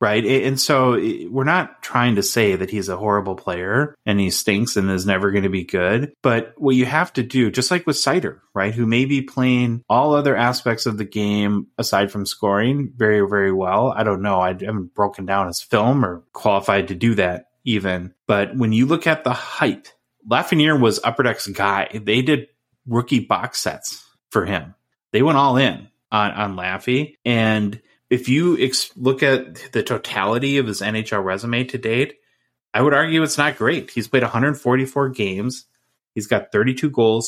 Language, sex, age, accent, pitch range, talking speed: English, male, 30-49, American, 105-130 Hz, 190 wpm